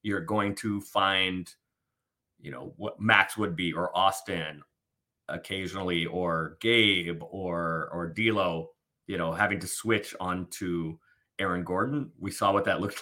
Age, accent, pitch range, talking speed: 30-49, American, 90-120 Hz, 145 wpm